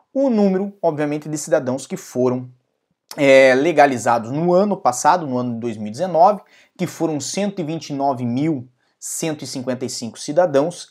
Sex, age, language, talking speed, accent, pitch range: male, 20-39, Portuguese, 105 wpm, Brazilian, 130-195 Hz